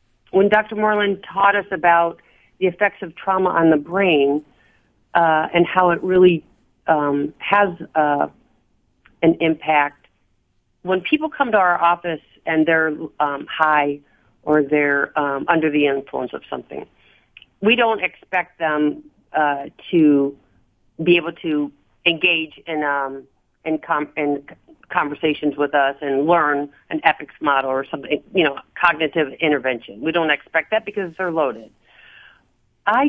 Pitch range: 145-185 Hz